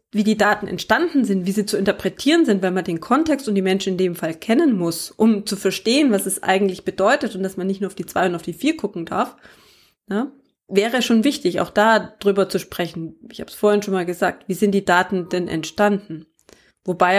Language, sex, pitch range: German, female, 190-215 Hz